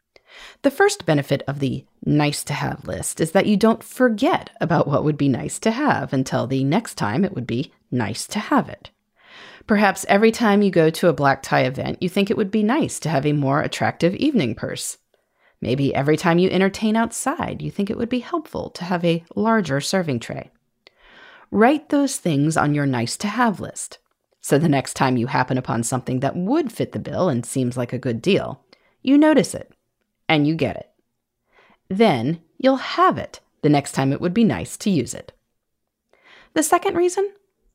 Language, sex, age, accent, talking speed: English, female, 30-49, American, 190 wpm